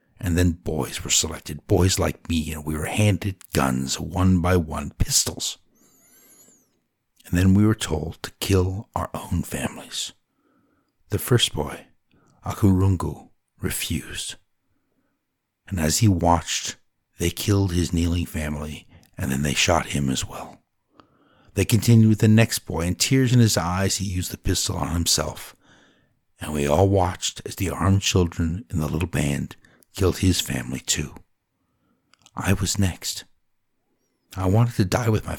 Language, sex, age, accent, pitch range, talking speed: English, male, 60-79, American, 80-105 Hz, 155 wpm